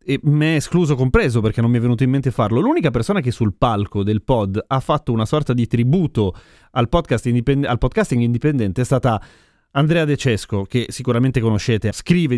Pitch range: 110-140 Hz